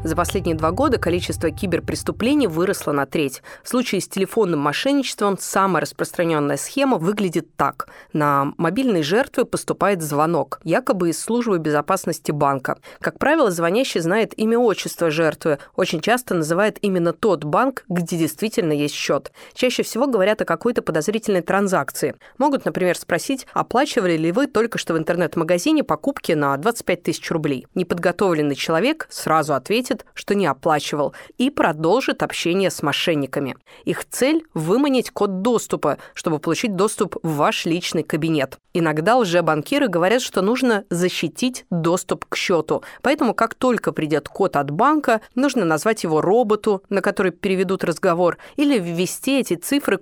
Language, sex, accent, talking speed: Russian, female, native, 145 wpm